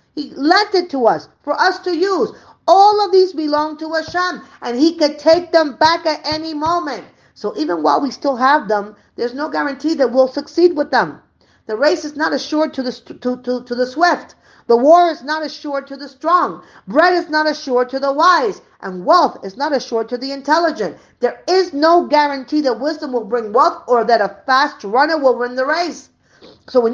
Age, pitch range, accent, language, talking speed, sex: 40-59, 230-315 Hz, American, English, 205 wpm, female